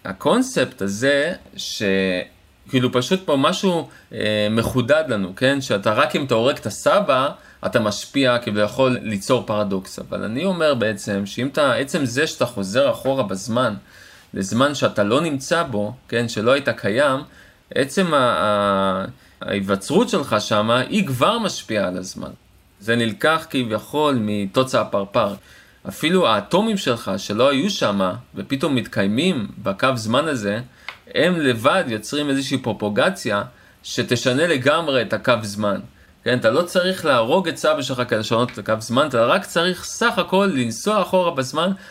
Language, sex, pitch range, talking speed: Hebrew, male, 105-150 Hz, 140 wpm